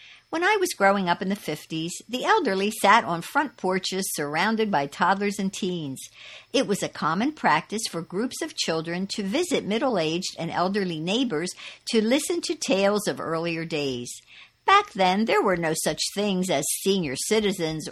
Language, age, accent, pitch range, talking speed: English, 60-79, American, 160-230 Hz, 170 wpm